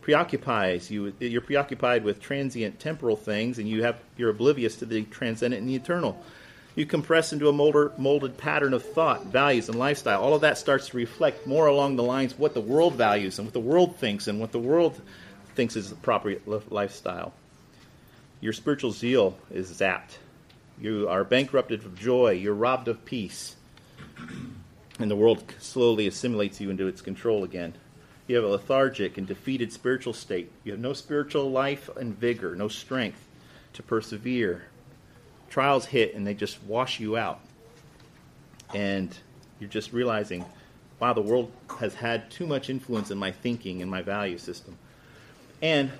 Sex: male